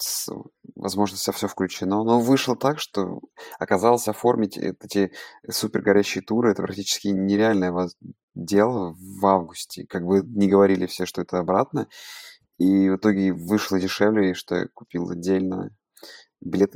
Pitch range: 95-105 Hz